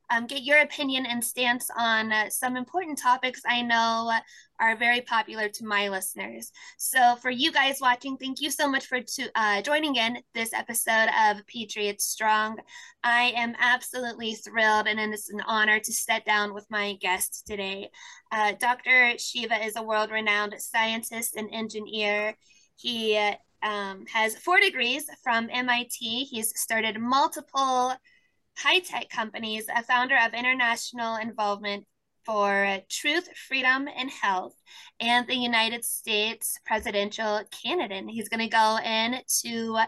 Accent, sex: American, female